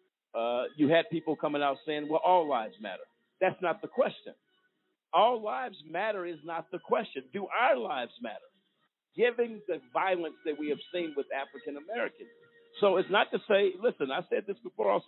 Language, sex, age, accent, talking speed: English, male, 50-69, American, 185 wpm